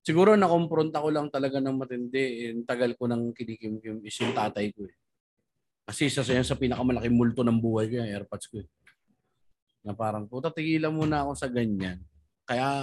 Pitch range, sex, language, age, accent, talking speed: 120-155 Hz, male, Filipino, 20-39, native, 185 wpm